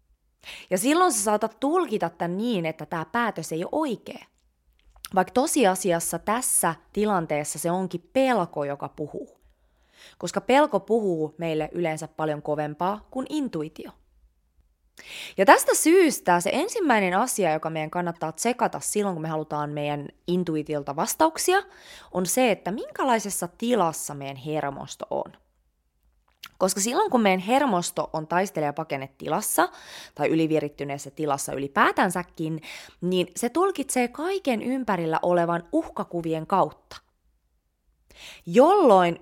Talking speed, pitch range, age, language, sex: 120 wpm, 150-220 Hz, 20-39, Finnish, female